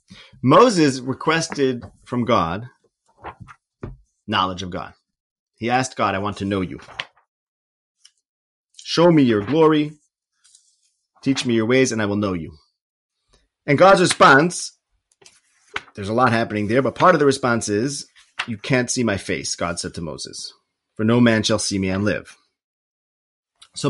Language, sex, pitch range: English, male, 95-130 Hz